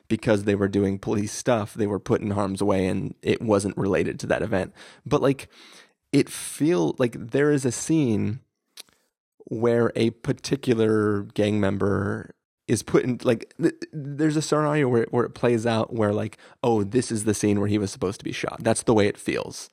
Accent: American